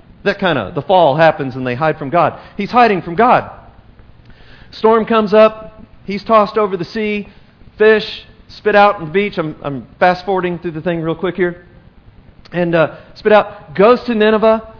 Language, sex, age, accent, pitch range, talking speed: English, male, 40-59, American, 155-215 Hz, 185 wpm